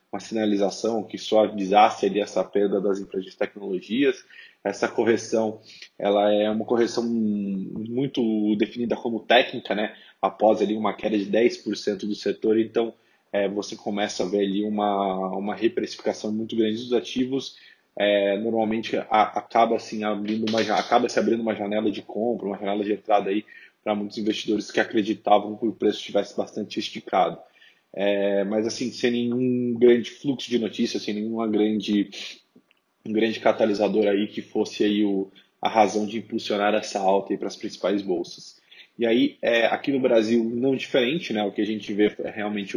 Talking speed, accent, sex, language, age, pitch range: 170 wpm, Brazilian, male, Portuguese, 20-39, 100-115 Hz